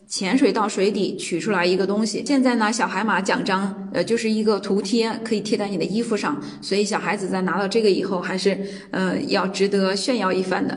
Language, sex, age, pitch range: Chinese, female, 20-39, 195-235 Hz